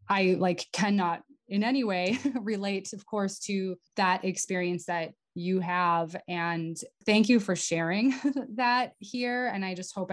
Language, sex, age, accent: English, female, 20-39, American